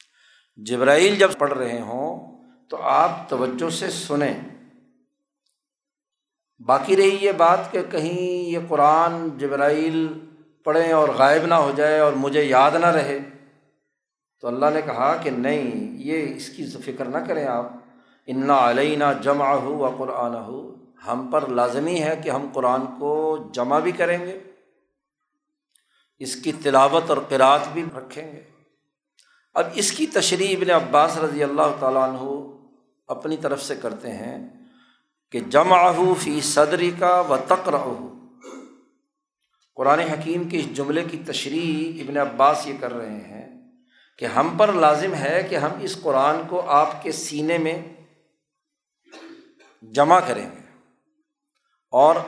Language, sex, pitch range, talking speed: Urdu, male, 140-185 Hz, 140 wpm